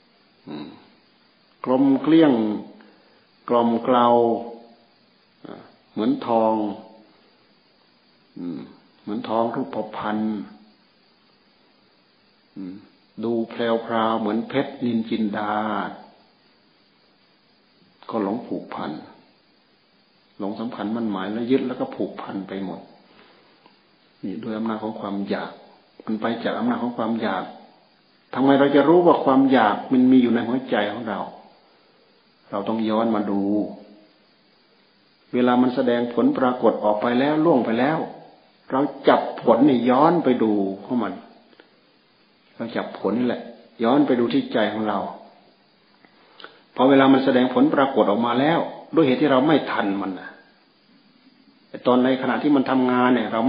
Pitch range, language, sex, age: 110-130 Hz, Thai, male, 60-79